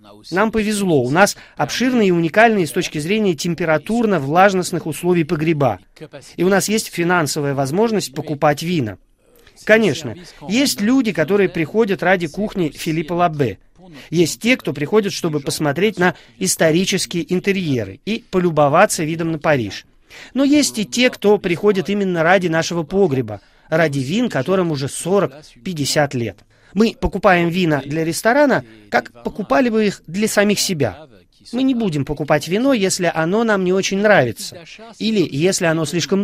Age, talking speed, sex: 30-49, 145 wpm, male